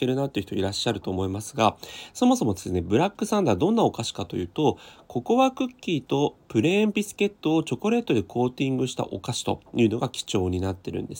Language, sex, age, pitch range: Japanese, male, 30-49, 105-170 Hz